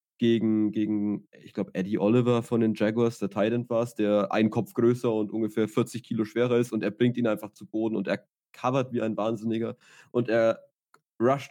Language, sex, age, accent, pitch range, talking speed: German, male, 20-39, German, 110-125 Hz, 200 wpm